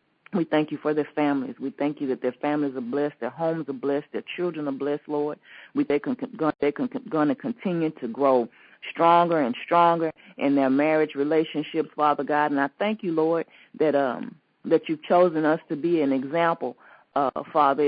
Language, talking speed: English, 185 wpm